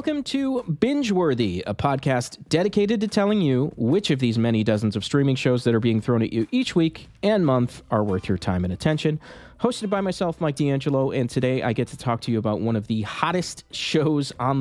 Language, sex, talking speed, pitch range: English, male, 220 wpm, 105-140 Hz